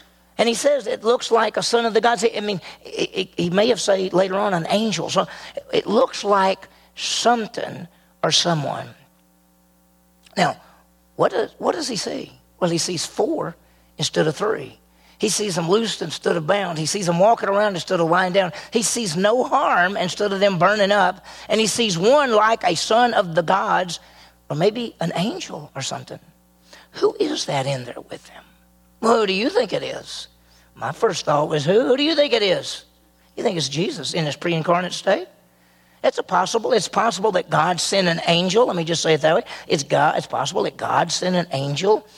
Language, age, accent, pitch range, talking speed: English, 40-59, American, 150-205 Hz, 200 wpm